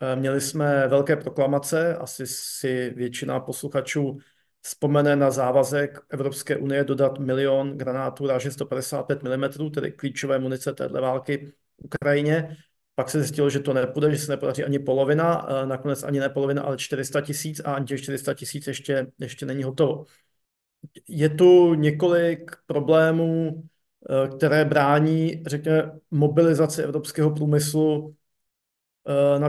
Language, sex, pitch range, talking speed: Slovak, male, 135-155 Hz, 130 wpm